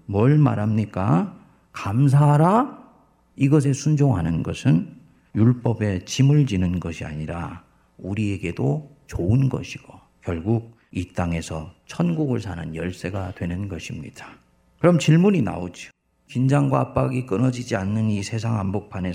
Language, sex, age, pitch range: Korean, male, 40-59, 90-140 Hz